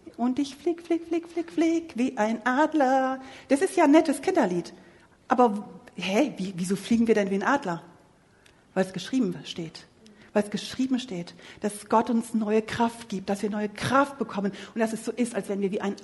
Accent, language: German, German